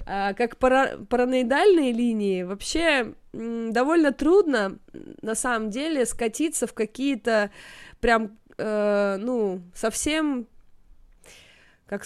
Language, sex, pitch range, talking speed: Russian, female, 210-270 Hz, 100 wpm